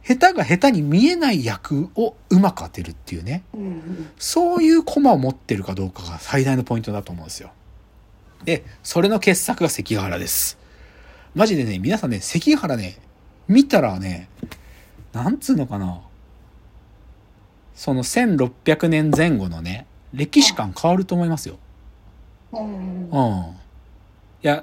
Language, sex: Japanese, male